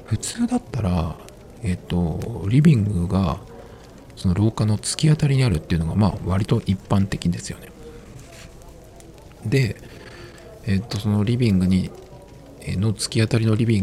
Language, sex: Japanese, male